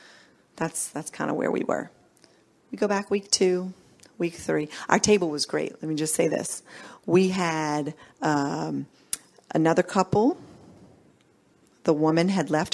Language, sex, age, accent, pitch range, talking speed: English, female, 40-59, American, 155-195 Hz, 150 wpm